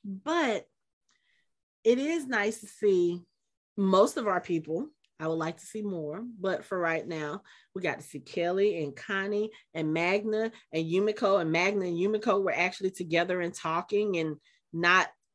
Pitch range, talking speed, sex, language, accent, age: 175-210 Hz, 165 wpm, female, English, American, 30-49